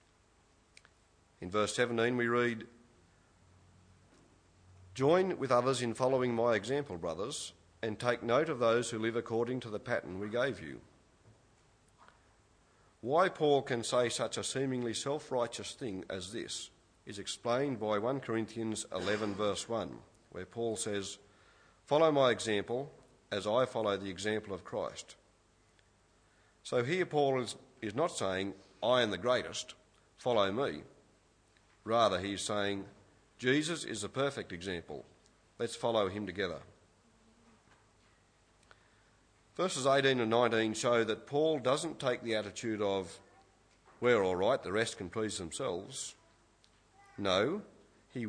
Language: English